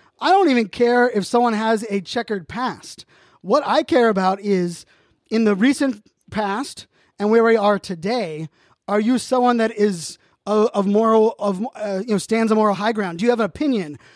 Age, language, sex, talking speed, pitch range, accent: 20-39, English, male, 195 wpm, 190-225 Hz, American